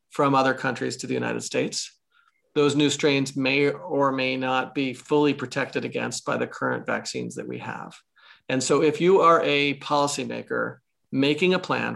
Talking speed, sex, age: 175 wpm, male, 40-59